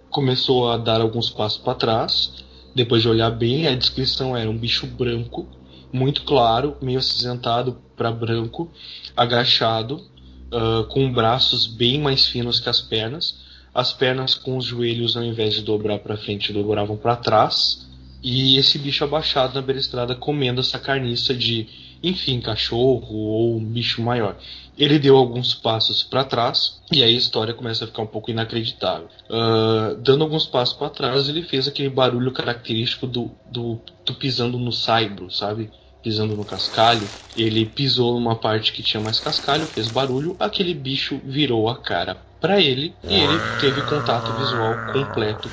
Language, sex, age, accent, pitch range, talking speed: Portuguese, male, 20-39, Brazilian, 110-130 Hz, 160 wpm